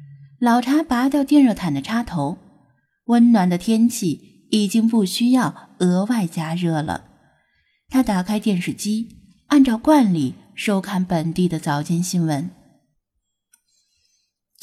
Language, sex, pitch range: Chinese, female, 175-255 Hz